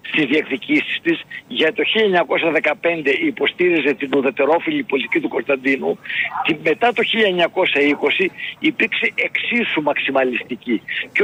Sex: male